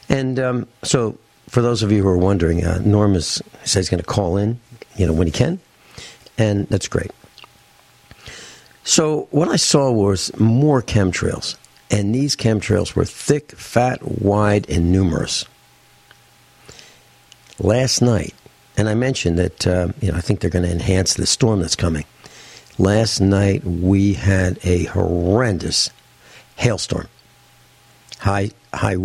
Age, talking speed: 60-79, 145 wpm